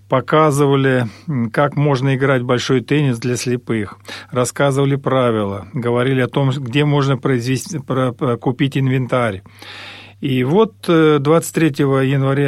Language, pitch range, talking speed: Russian, 115-145 Hz, 105 wpm